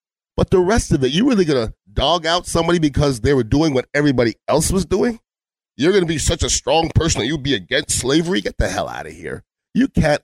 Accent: American